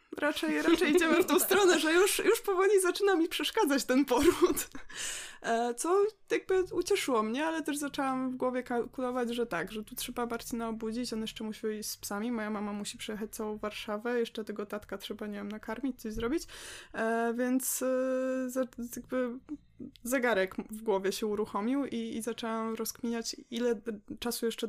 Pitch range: 215-275 Hz